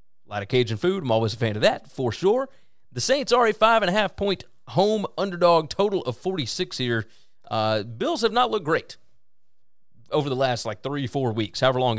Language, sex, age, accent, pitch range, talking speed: English, male, 30-49, American, 115-160 Hz, 195 wpm